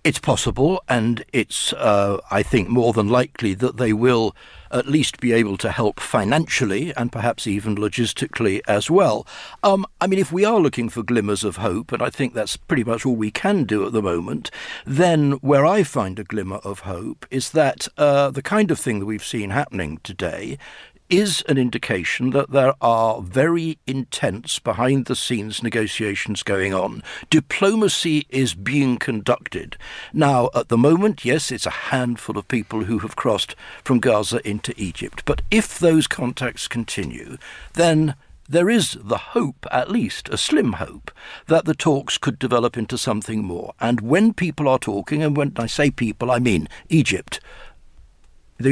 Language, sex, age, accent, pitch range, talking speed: English, male, 60-79, British, 110-145 Hz, 170 wpm